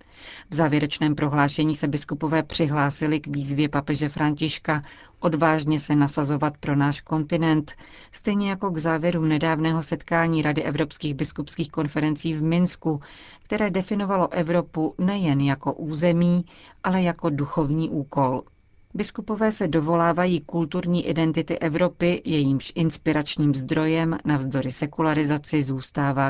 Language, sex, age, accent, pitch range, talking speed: Czech, female, 40-59, native, 145-170 Hz, 115 wpm